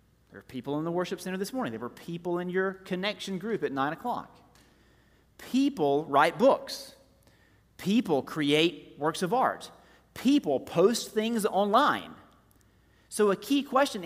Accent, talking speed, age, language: American, 150 wpm, 40-59, English